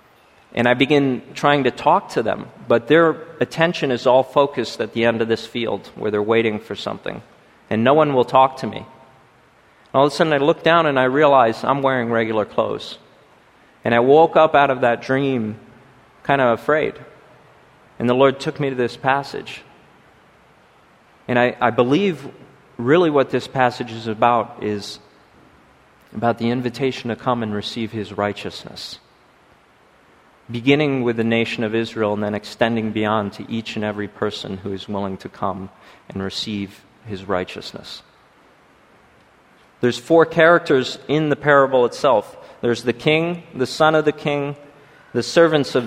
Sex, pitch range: male, 110-140 Hz